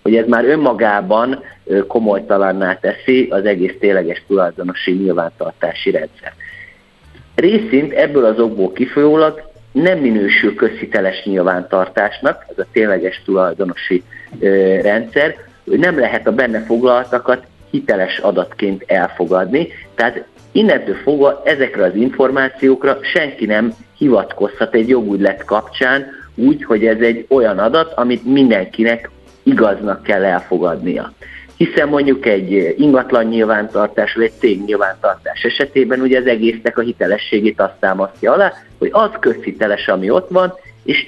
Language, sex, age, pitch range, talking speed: Hungarian, male, 50-69, 100-130 Hz, 125 wpm